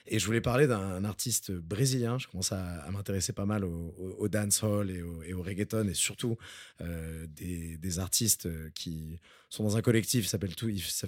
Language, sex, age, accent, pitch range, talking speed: French, male, 20-39, French, 95-120 Hz, 200 wpm